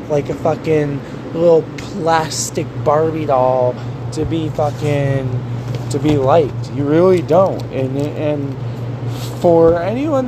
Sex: male